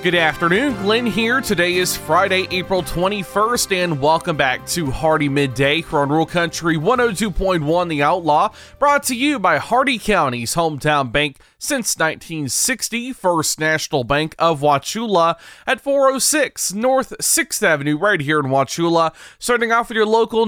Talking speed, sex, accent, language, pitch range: 145 wpm, male, American, English, 150-215 Hz